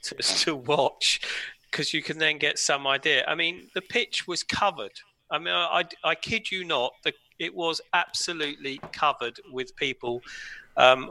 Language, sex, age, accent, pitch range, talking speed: English, male, 40-59, British, 130-150 Hz, 175 wpm